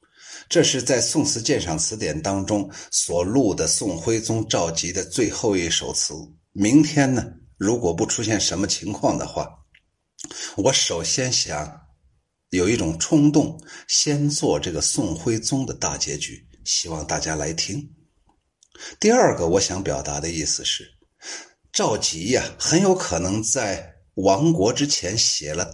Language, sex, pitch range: Chinese, male, 90-145 Hz